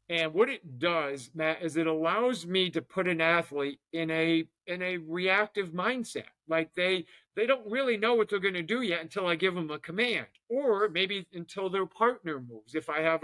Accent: American